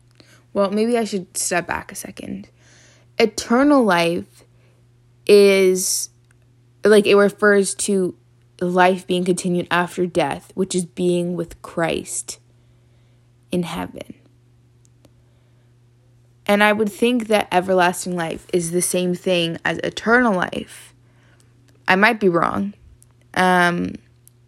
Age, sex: 20-39, female